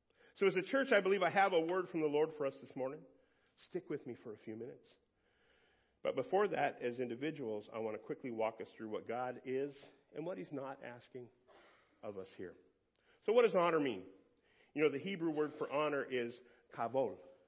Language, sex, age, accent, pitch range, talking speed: English, male, 50-69, American, 115-145 Hz, 210 wpm